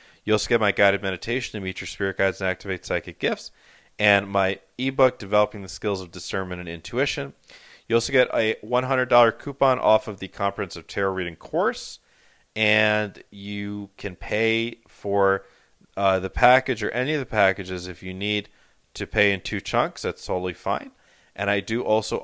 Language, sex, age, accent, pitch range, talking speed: English, male, 30-49, American, 95-115 Hz, 180 wpm